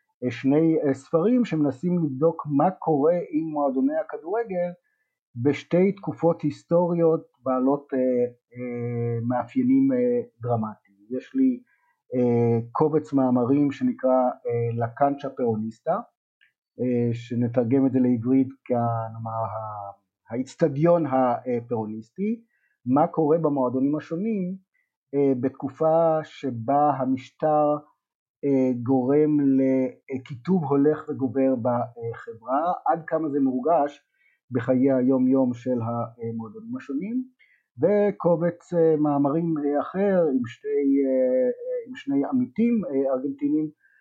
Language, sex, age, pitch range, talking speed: Hebrew, male, 50-69, 125-175 Hz, 80 wpm